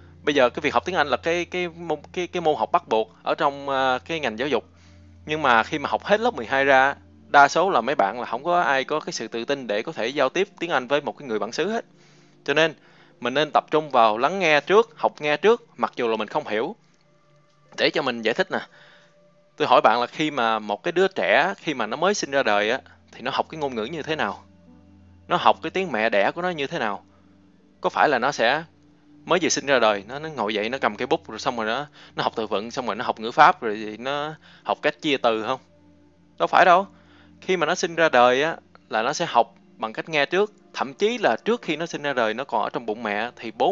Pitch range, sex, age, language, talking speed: 110-160 Hz, male, 20-39, Vietnamese, 270 wpm